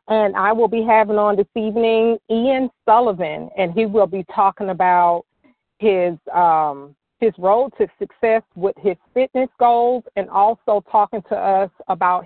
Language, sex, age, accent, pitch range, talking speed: English, female, 40-59, American, 190-230 Hz, 155 wpm